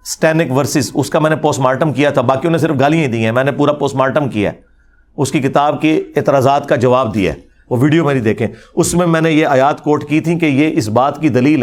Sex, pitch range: male, 145-185 Hz